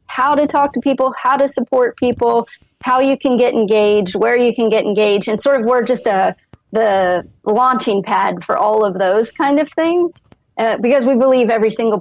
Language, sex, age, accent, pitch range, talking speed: English, female, 30-49, American, 205-245 Hz, 205 wpm